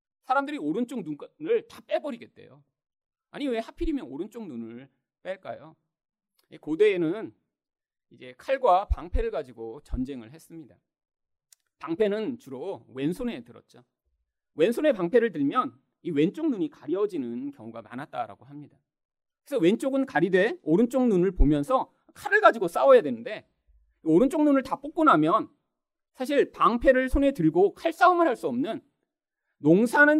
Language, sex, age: Korean, male, 40-59